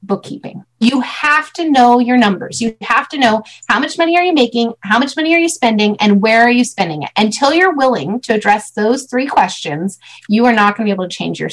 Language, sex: English, female